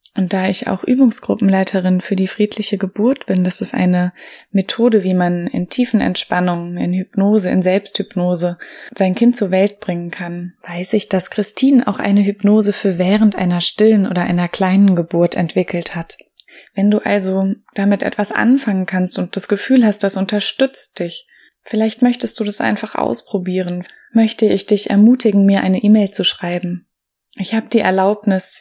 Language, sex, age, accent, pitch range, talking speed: German, female, 20-39, German, 180-210 Hz, 165 wpm